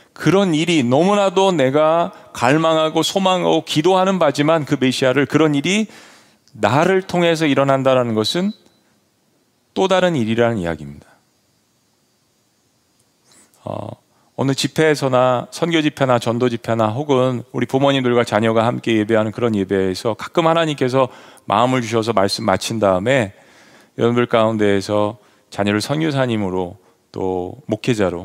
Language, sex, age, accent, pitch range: Korean, male, 40-59, native, 110-150 Hz